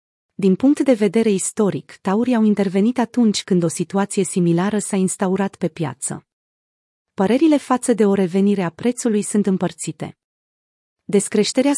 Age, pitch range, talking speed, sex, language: 30-49, 180-225 Hz, 140 wpm, female, Romanian